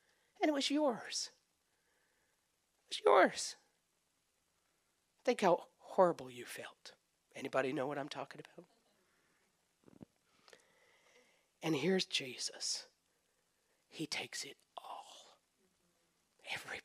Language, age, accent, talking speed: English, 50-69, American, 95 wpm